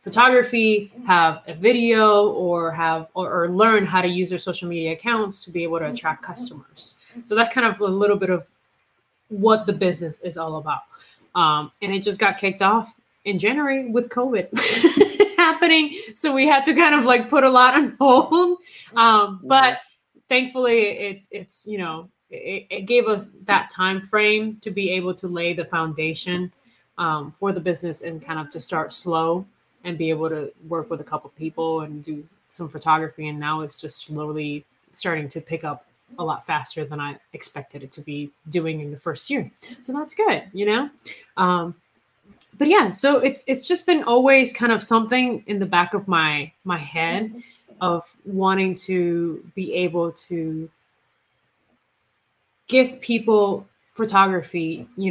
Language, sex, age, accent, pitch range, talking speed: English, female, 20-39, American, 160-235 Hz, 175 wpm